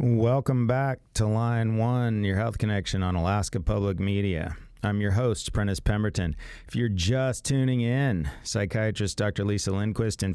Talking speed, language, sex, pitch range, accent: 155 wpm, English, male, 85-105 Hz, American